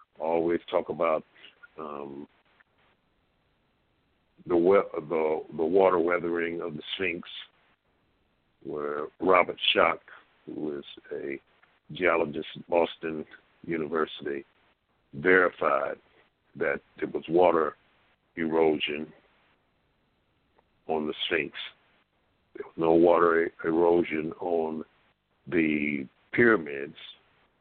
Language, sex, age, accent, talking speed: English, male, 60-79, American, 85 wpm